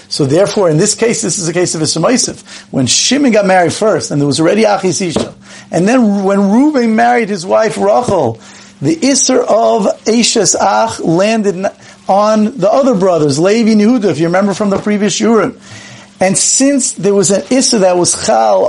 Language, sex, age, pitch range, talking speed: English, male, 50-69, 160-220 Hz, 190 wpm